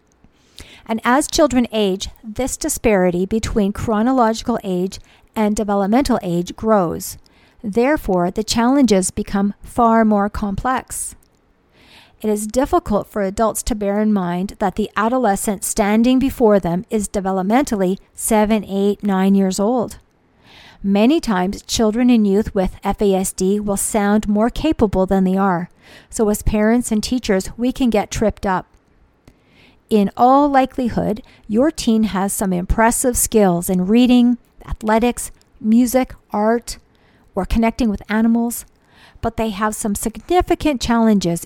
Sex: female